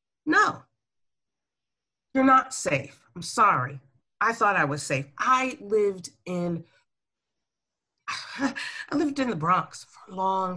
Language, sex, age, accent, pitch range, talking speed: English, female, 40-59, American, 145-215 Hz, 125 wpm